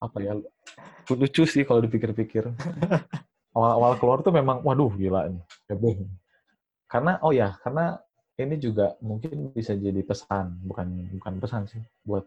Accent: native